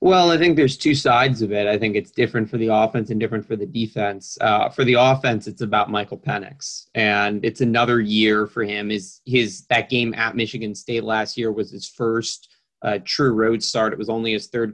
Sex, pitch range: male, 105-120 Hz